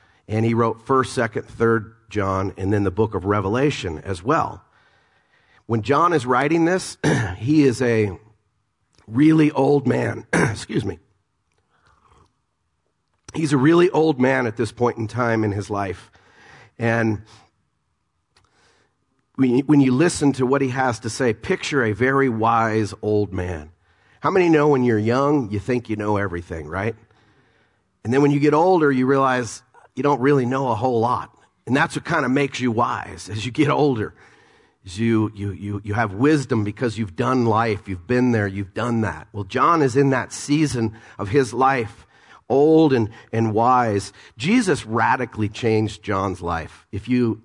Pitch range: 105-130 Hz